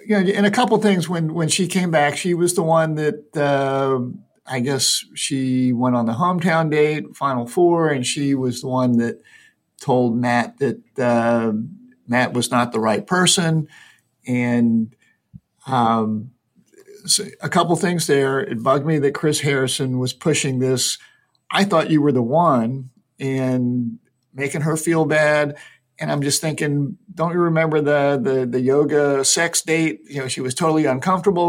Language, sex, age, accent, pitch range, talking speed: English, male, 50-69, American, 125-160 Hz, 170 wpm